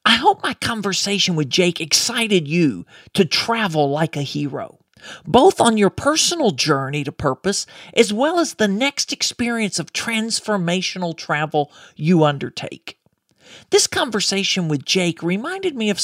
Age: 40-59